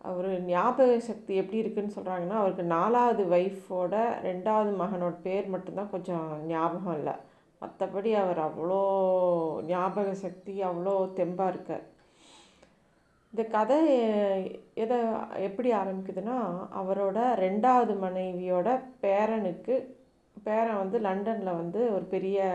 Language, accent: Tamil, native